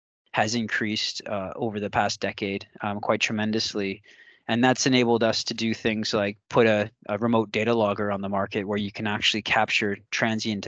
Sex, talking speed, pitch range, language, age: male, 185 wpm, 105-120 Hz, English, 20-39